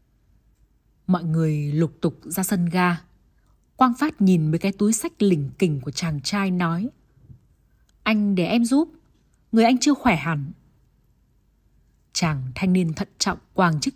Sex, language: female, Vietnamese